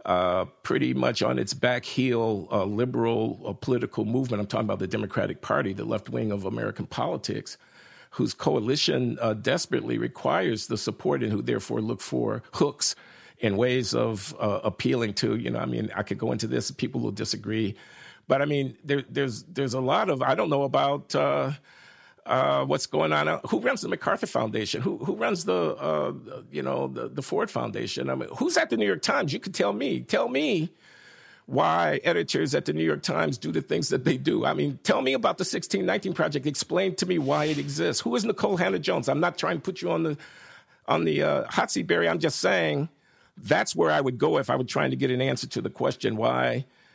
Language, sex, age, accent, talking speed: English, male, 50-69, American, 220 wpm